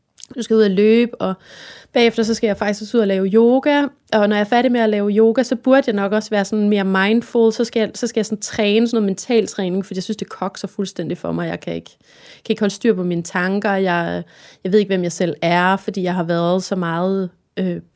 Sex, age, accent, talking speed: female, 30-49, native, 265 wpm